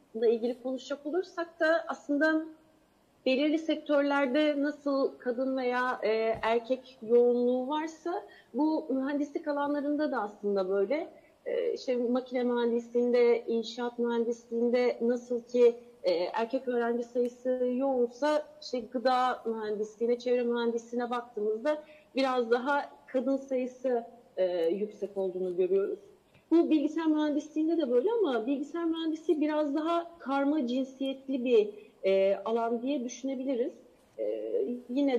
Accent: native